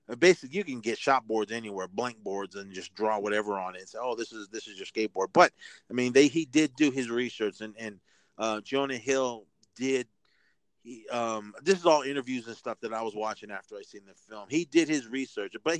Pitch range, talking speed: 110-140 Hz, 230 wpm